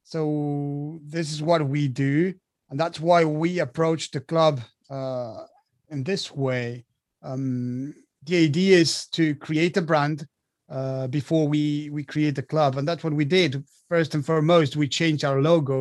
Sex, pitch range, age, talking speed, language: male, 135-160 Hz, 30-49, 165 wpm, English